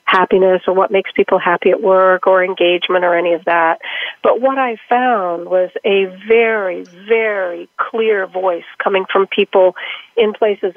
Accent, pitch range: American, 180-235 Hz